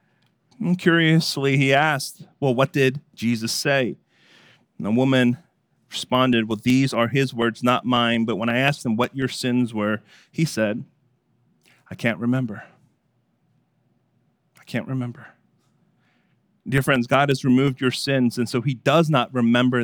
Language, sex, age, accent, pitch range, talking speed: English, male, 30-49, American, 125-155 Hz, 150 wpm